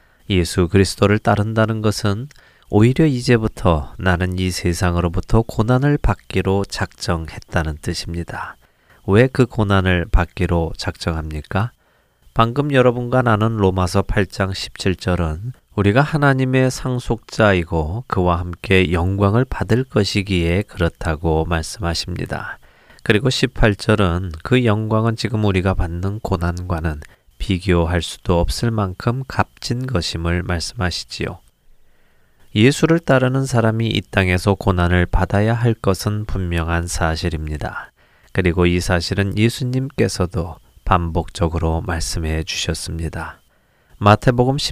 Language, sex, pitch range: Korean, male, 85-115 Hz